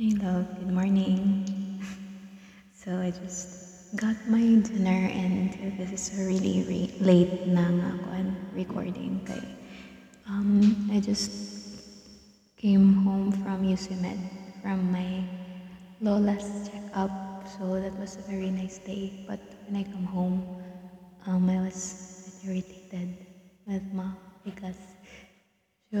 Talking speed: 115 wpm